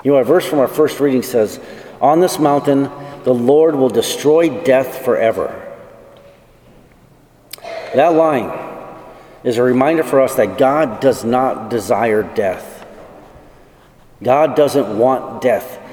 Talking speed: 130 wpm